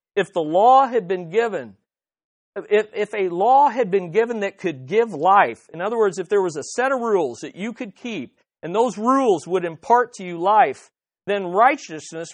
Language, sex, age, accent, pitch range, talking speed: English, male, 50-69, American, 175-230 Hz, 200 wpm